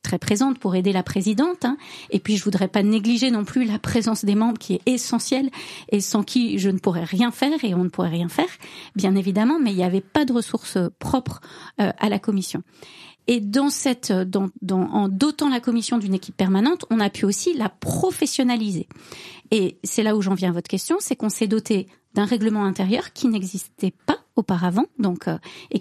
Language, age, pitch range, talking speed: French, 40-59, 195-250 Hz, 205 wpm